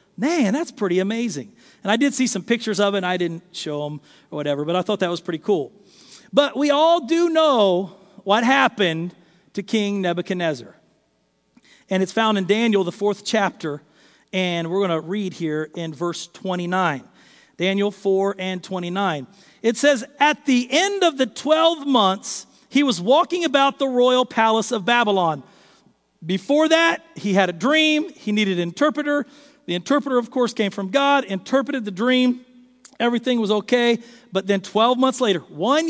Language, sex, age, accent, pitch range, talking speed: English, male, 40-59, American, 190-270 Hz, 175 wpm